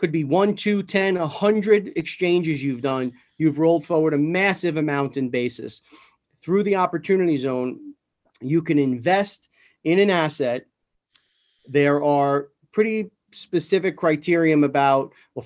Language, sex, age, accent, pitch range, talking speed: English, male, 40-59, American, 140-185 Hz, 130 wpm